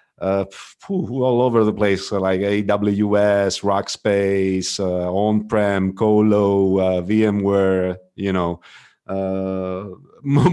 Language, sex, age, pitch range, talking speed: English, male, 40-59, 100-130 Hz, 105 wpm